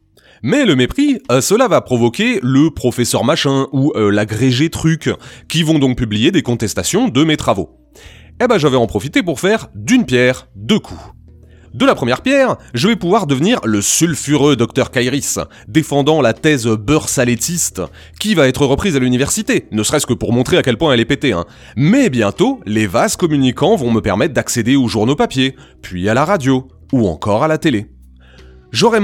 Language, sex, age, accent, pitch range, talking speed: French, male, 30-49, French, 120-155 Hz, 190 wpm